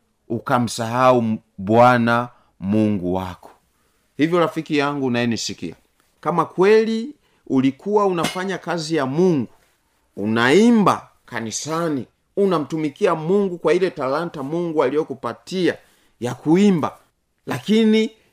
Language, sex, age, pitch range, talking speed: Swahili, male, 30-49, 125-200 Hz, 90 wpm